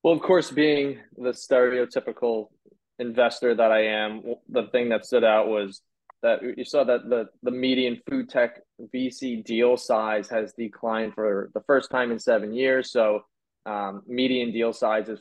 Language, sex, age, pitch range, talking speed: English, male, 20-39, 110-135 Hz, 165 wpm